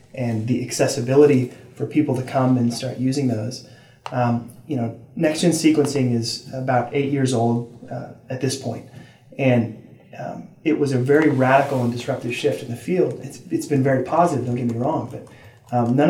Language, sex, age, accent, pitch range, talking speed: English, male, 30-49, American, 125-145 Hz, 185 wpm